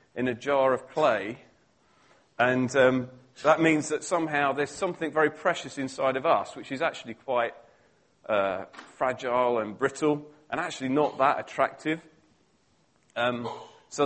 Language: English